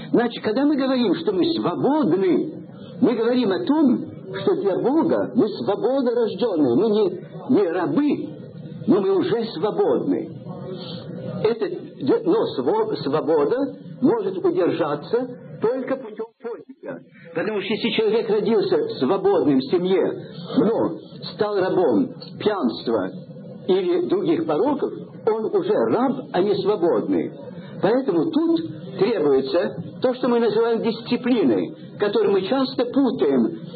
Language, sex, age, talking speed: Russian, male, 50-69, 115 wpm